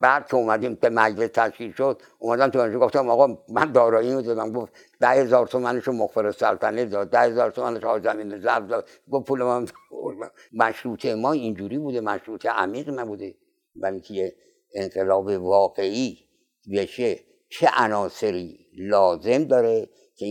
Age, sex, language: 60-79, male, Persian